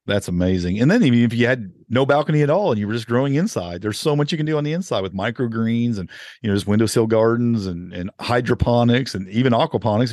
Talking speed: 245 wpm